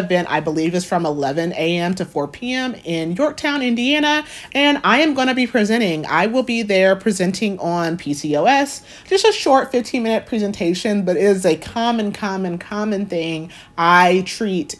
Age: 30-49